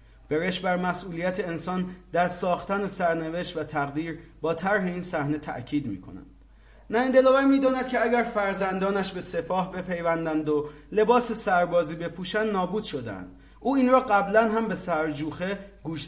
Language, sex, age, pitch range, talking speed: English, male, 30-49, 150-195 Hz, 150 wpm